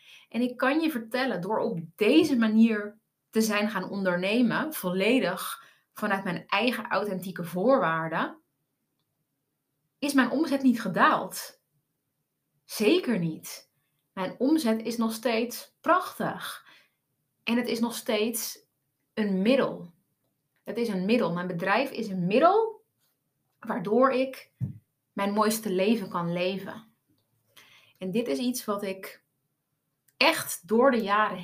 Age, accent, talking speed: 30-49, Dutch, 125 wpm